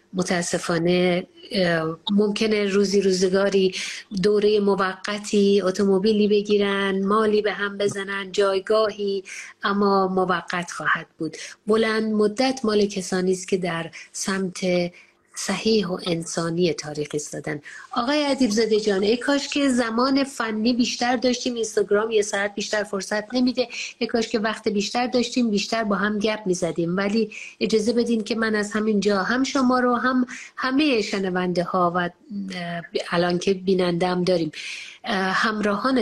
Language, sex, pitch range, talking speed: English, female, 190-230 Hz, 130 wpm